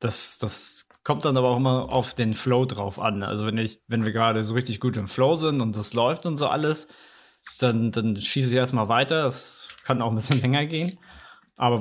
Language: German